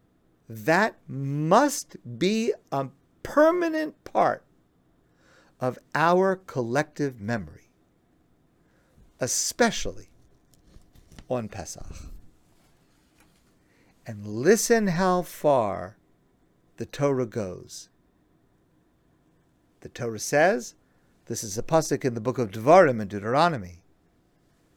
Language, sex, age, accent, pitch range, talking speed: English, male, 50-69, American, 120-195 Hz, 80 wpm